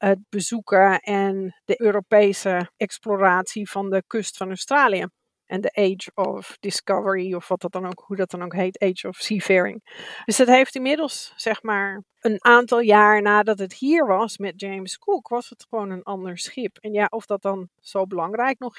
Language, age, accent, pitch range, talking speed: Dutch, 40-59, Dutch, 190-225 Hz, 190 wpm